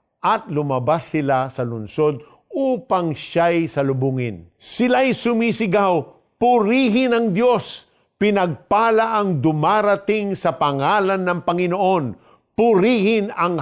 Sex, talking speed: male, 95 wpm